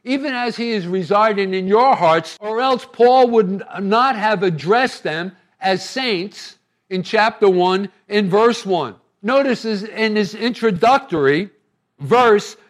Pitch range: 185-220 Hz